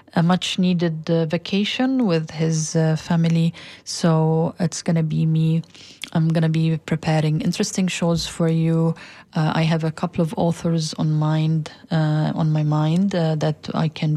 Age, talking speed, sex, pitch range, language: 30-49, 160 wpm, female, 165-195 Hz, English